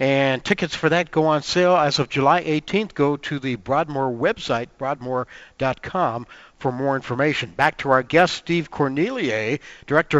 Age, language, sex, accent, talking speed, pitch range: 60-79, English, male, American, 160 wpm, 140-190 Hz